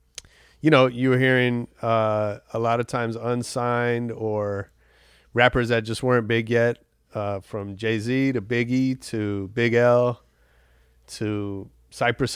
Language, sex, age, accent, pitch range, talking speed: English, male, 30-49, American, 100-120 Hz, 135 wpm